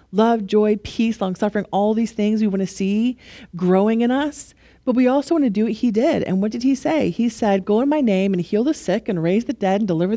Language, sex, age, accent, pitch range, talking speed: English, female, 40-59, American, 180-240 Hz, 260 wpm